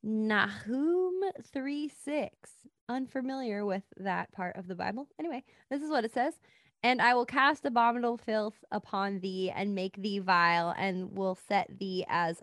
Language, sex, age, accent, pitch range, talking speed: English, female, 20-39, American, 200-260 Hz, 160 wpm